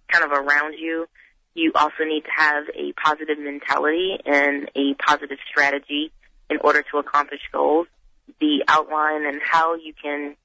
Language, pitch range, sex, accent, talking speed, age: English, 140-160 Hz, female, American, 155 wpm, 30-49